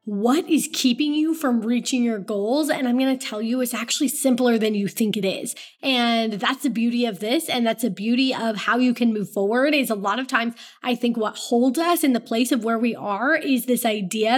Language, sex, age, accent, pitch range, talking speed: English, female, 20-39, American, 220-275 Hz, 240 wpm